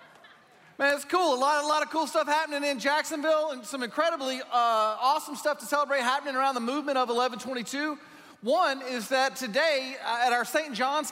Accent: American